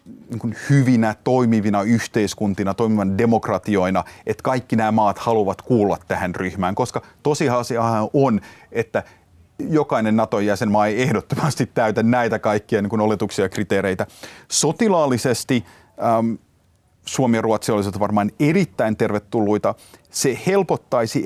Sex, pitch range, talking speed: male, 100-130 Hz, 115 wpm